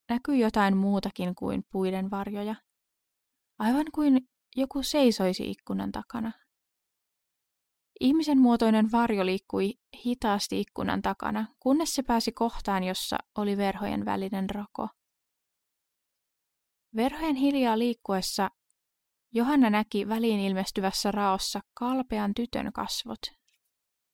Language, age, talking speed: Finnish, 20-39, 95 wpm